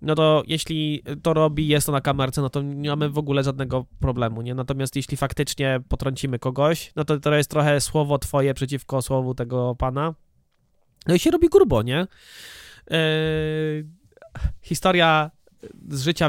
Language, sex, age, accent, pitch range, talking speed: Polish, male, 20-39, native, 130-150 Hz, 160 wpm